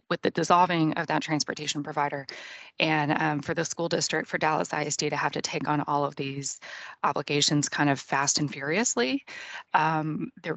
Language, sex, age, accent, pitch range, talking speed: English, female, 20-39, American, 145-170 Hz, 180 wpm